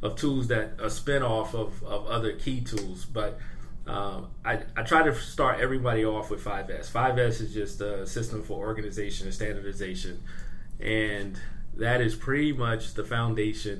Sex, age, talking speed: male, 30-49, 165 wpm